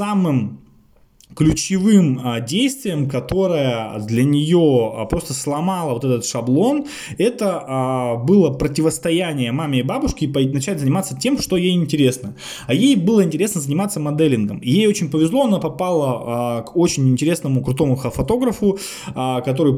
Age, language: 20-39, Russian